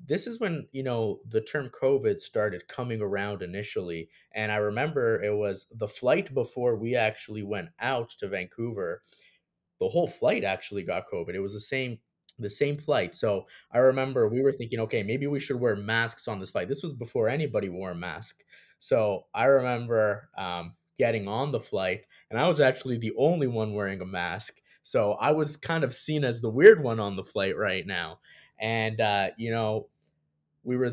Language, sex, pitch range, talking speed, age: English, male, 100-130 Hz, 195 wpm, 20-39